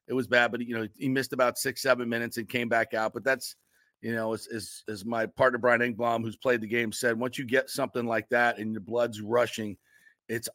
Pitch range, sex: 115-130 Hz, male